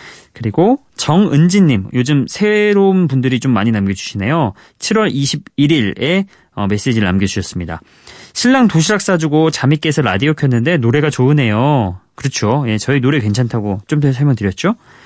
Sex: male